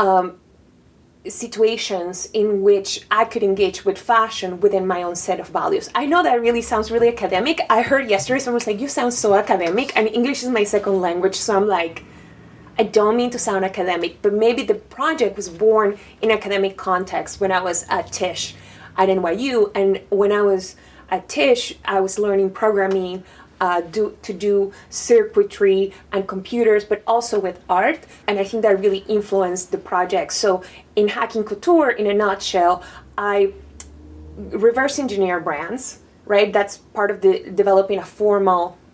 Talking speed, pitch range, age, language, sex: 170 wpm, 185-220 Hz, 20-39, English, female